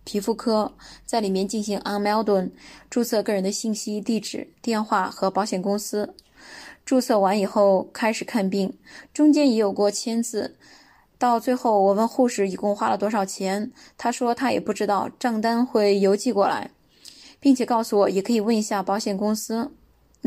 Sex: female